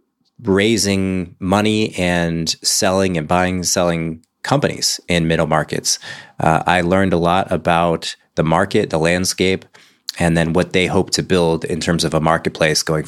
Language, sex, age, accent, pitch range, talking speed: English, male, 30-49, American, 85-105 Hz, 155 wpm